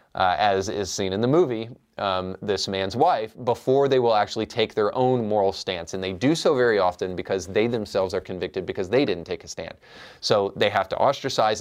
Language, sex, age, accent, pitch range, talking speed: English, male, 30-49, American, 95-125 Hz, 215 wpm